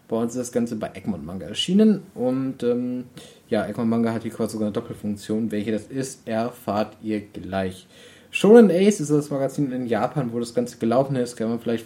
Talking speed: 205 wpm